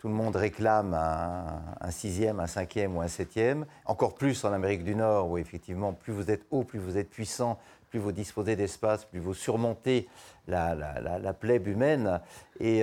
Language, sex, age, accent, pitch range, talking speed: French, male, 50-69, French, 95-115 Hz, 195 wpm